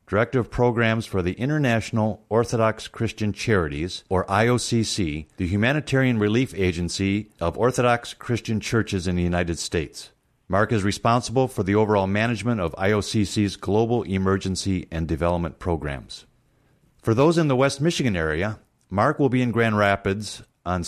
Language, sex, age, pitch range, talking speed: English, male, 50-69, 90-120 Hz, 145 wpm